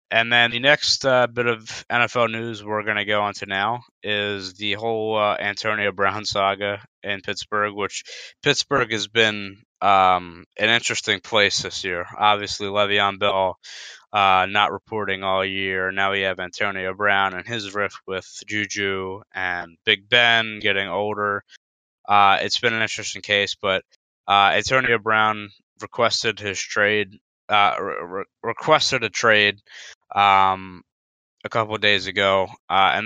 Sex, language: male, English